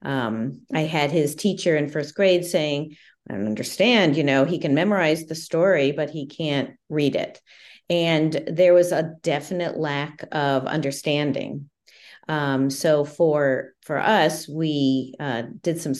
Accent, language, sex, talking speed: American, English, female, 155 wpm